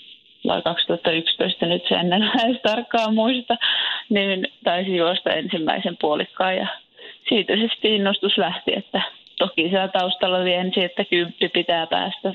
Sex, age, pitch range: female, 30-49, 165-200 Hz